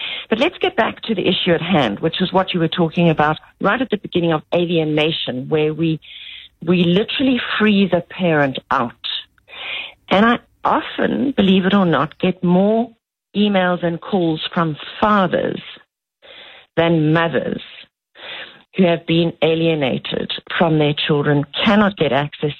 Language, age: English, 50-69